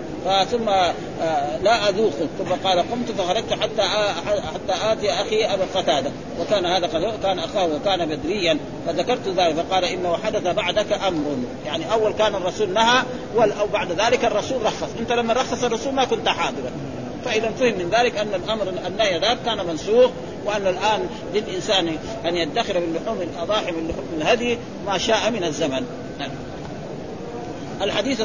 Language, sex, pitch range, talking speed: Arabic, male, 175-220 Hz, 150 wpm